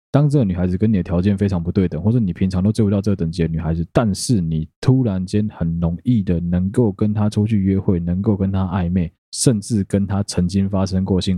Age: 20-39